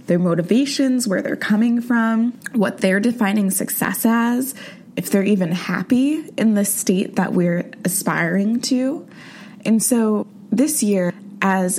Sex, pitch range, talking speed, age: female, 180-215 Hz, 135 wpm, 20-39